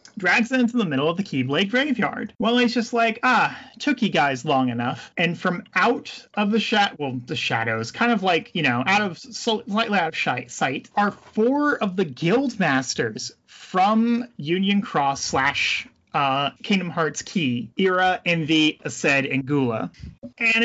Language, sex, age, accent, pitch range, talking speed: English, male, 30-49, American, 165-230 Hz, 170 wpm